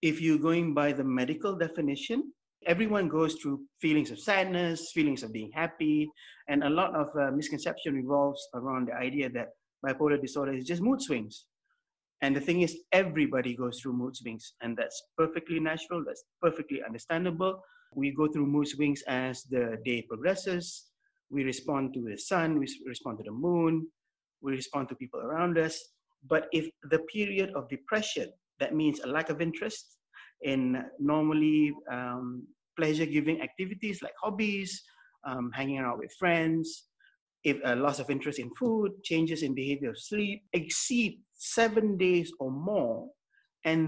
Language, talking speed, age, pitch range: English, 160 wpm, 30-49, 140-190 Hz